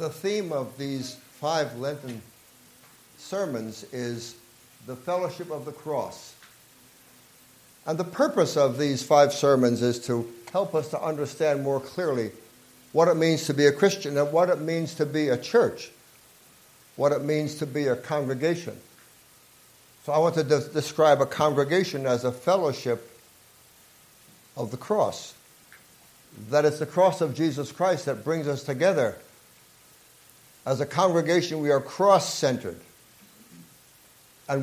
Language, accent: English, American